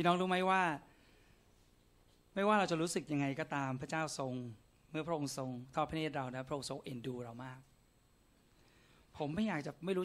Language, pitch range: Thai, 130-165 Hz